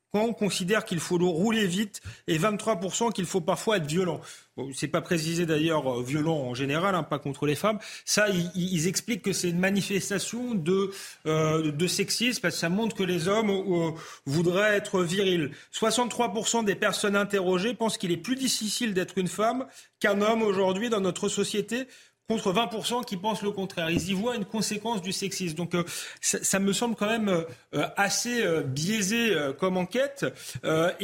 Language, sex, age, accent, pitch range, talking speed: French, male, 30-49, French, 180-215 Hz, 185 wpm